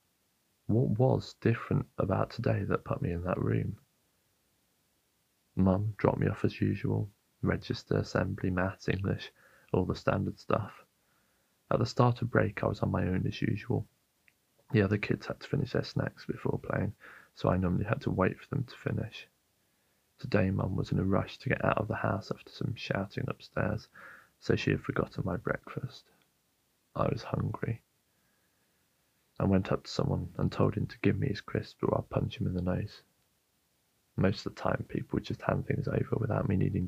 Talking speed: 190 wpm